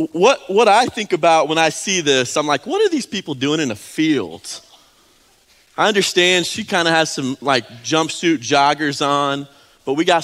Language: English